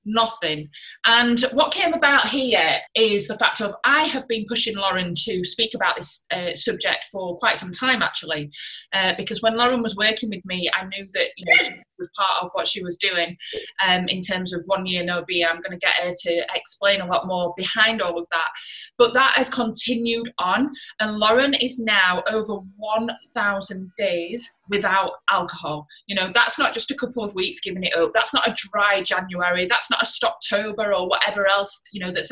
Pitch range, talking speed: 190-240 Hz, 200 wpm